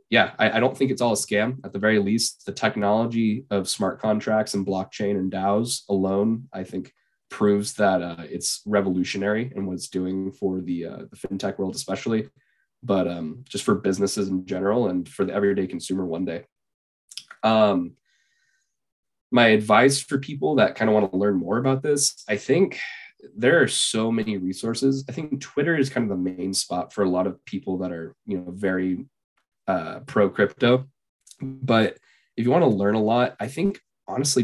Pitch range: 95-120 Hz